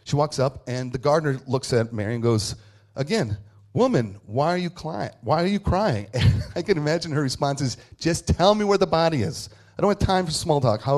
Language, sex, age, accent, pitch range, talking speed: English, male, 40-59, American, 105-130 Hz, 235 wpm